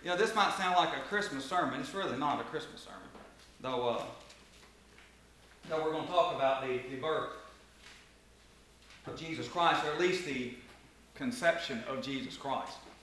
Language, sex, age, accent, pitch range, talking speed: English, male, 40-59, American, 175-225 Hz, 170 wpm